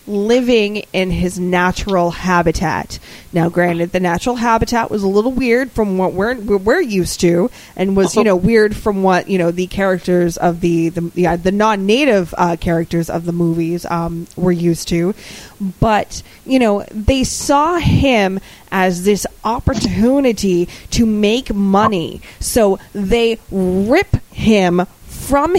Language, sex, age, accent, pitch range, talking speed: English, female, 20-39, American, 185-255 Hz, 150 wpm